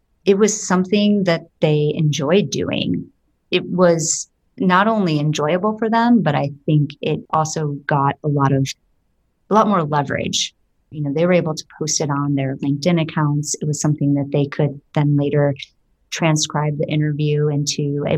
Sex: female